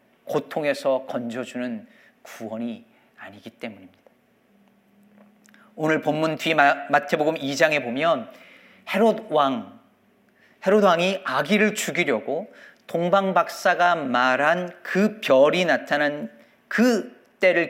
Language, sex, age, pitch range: Korean, male, 40-59, 170-245 Hz